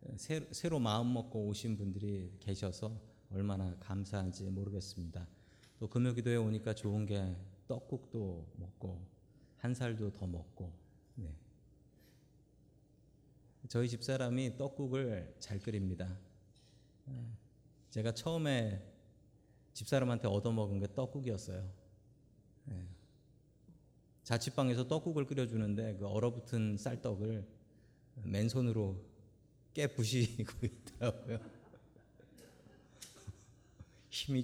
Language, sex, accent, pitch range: Korean, male, native, 100-130 Hz